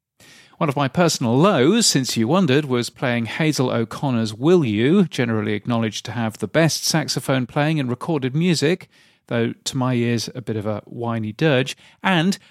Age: 40-59